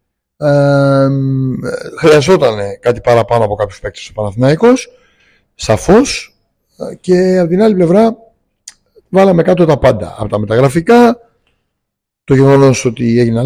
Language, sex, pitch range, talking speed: Greek, male, 115-160 Hz, 115 wpm